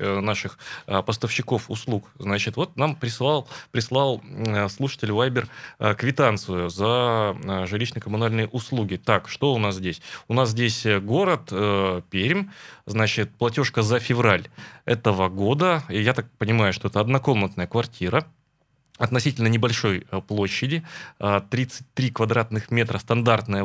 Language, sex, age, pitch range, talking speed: Russian, male, 20-39, 100-130 Hz, 115 wpm